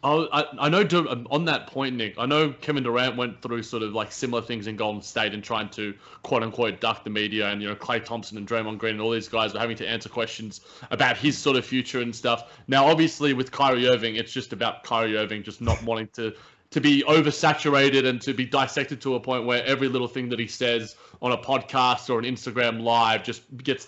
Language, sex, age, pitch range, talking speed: English, male, 20-39, 120-150 Hz, 230 wpm